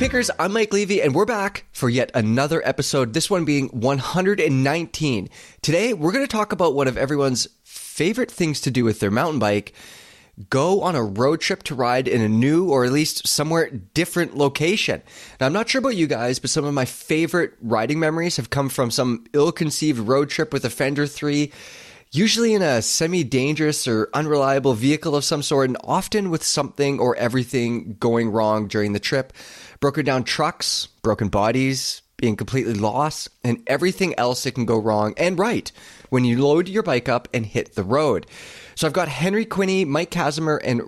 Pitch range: 120-165 Hz